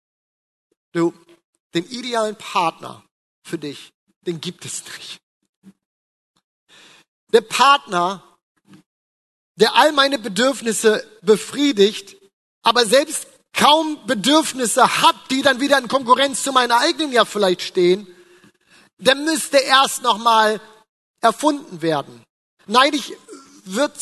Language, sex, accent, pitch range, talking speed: German, male, German, 200-275 Hz, 105 wpm